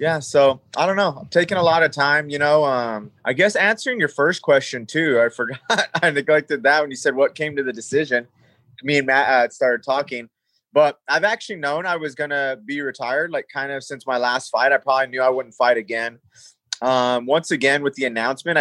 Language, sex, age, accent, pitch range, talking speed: English, male, 20-39, American, 125-155 Hz, 225 wpm